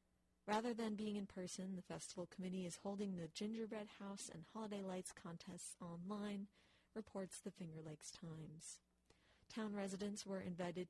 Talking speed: 150 wpm